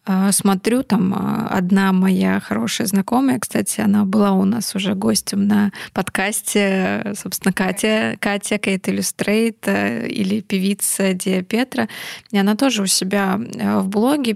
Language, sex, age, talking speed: Russian, female, 20-39, 130 wpm